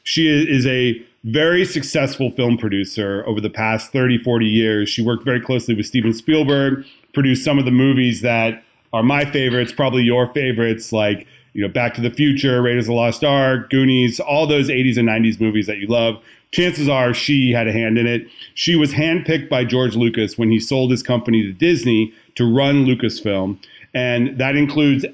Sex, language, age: male, English, 40-59